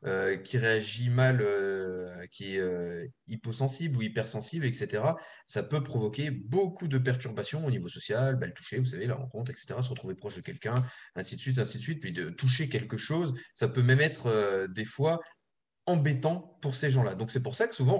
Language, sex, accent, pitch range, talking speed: French, male, French, 115-150 Hz, 205 wpm